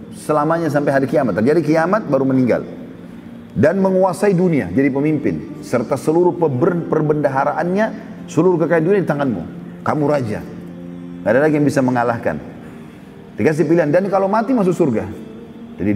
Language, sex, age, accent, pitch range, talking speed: Indonesian, male, 30-49, native, 120-170 Hz, 140 wpm